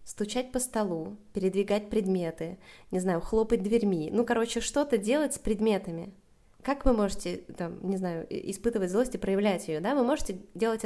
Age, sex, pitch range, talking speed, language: 20-39, female, 195-230 Hz, 165 wpm, Russian